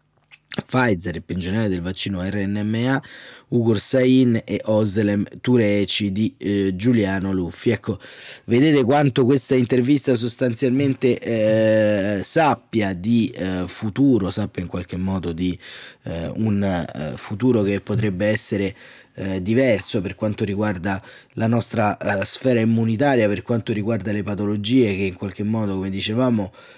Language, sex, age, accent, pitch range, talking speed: Italian, male, 30-49, native, 105-125 Hz, 130 wpm